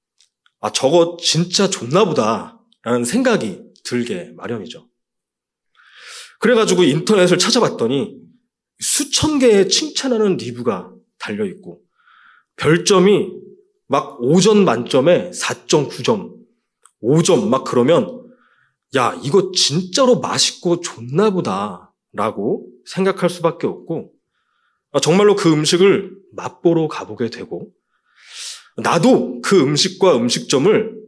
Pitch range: 140-220 Hz